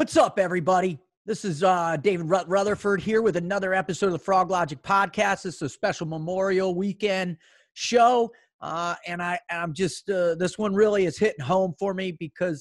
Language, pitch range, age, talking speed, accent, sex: English, 165-195 Hz, 30-49, 185 wpm, American, male